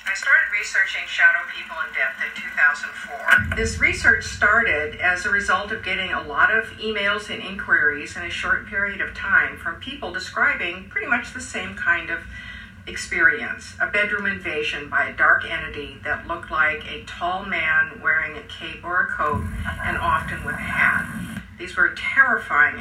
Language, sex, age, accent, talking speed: English, female, 50-69, American, 175 wpm